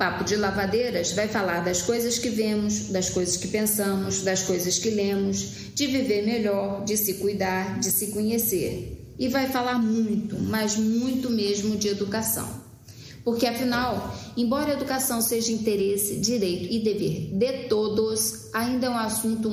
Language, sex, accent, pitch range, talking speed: Portuguese, female, Brazilian, 180-225 Hz, 155 wpm